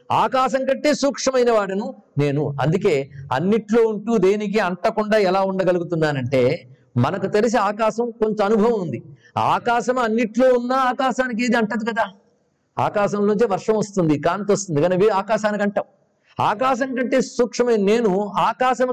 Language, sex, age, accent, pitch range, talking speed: Telugu, male, 50-69, native, 155-225 Hz, 125 wpm